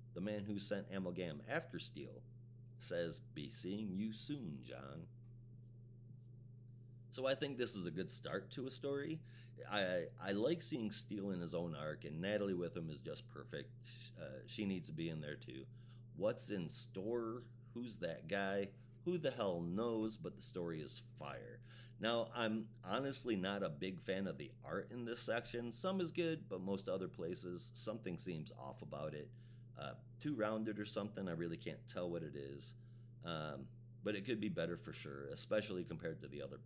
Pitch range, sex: 95-120 Hz, male